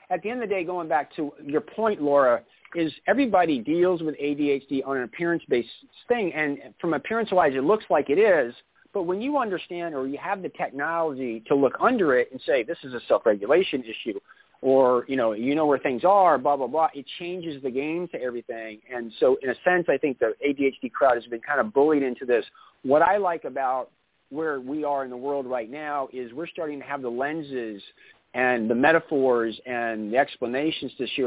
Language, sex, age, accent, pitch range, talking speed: English, male, 40-59, American, 130-175 Hz, 210 wpm